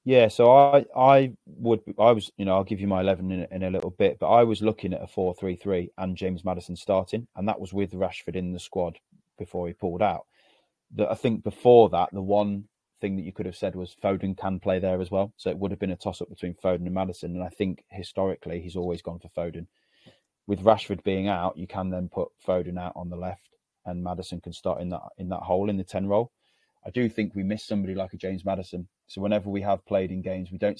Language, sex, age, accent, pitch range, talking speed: English, male, 30-49, British, 90-100 Hz, 255 wpm